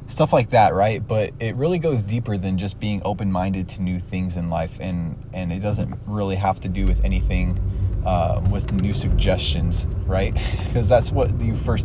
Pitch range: 100-115 Hz